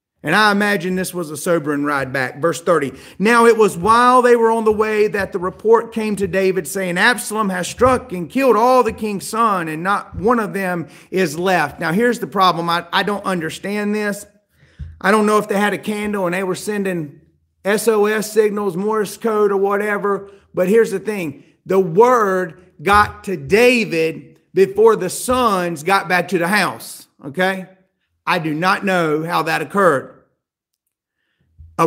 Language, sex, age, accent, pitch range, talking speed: English, male, 40-59, American, 165-205 Hz, 180 wpm